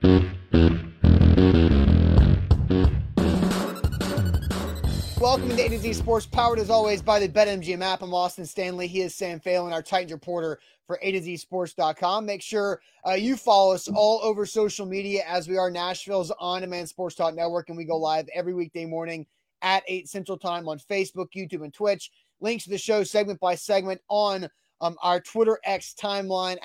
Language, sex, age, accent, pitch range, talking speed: English, male, 20-39, American, 165-195 Hz, 170 wpm